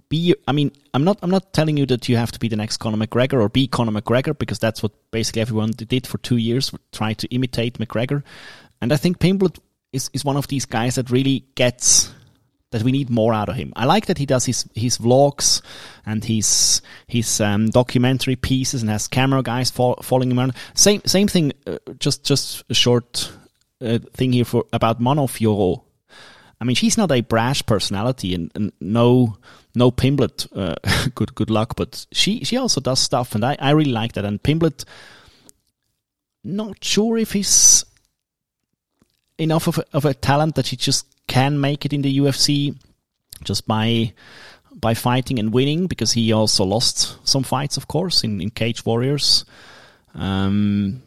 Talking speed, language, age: 185 wpm, English, 30-49